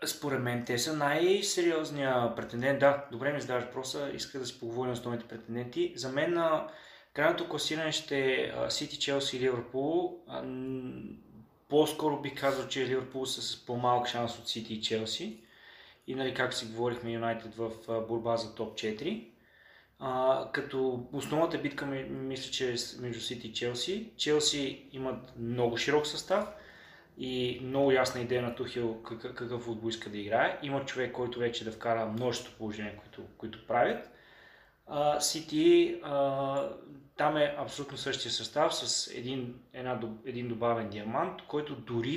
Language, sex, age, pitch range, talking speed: Bulgarian, male, 20-39, 115-140 Hz, 150 wpm